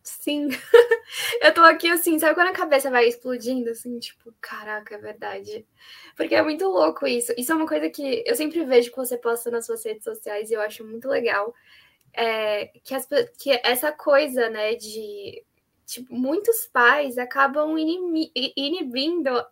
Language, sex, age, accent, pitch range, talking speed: Portuguese, female, 10-29, Brazilian, 240-345 Hz, 160 wpm